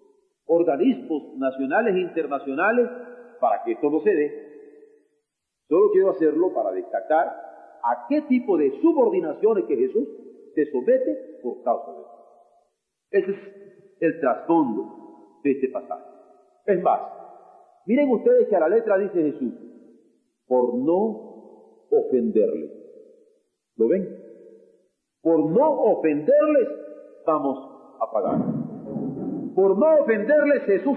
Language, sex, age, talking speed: Spanish, male, 40-59, 115 wpm